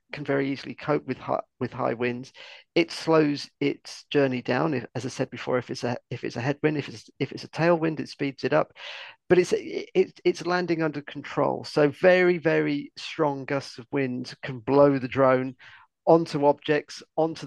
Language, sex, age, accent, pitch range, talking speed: English, male, 50-69, British, 135-155 Hz, 185 wpm